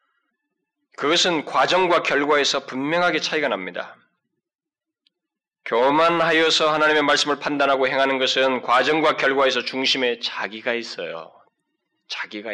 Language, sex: Korean, male